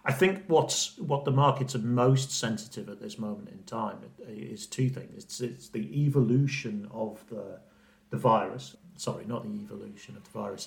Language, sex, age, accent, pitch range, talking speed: English, male, 50-69, British, 105-135 Hz, 180 wpm